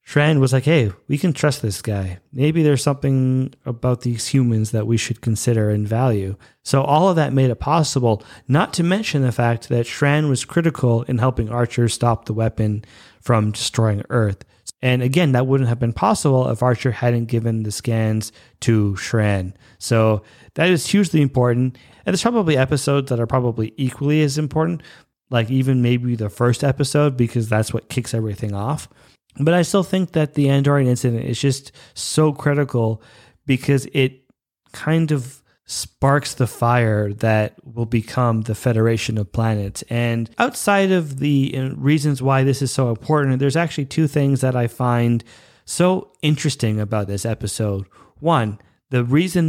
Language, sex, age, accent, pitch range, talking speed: English, male, 30-49, American, 115-145 Hz, 170 wpm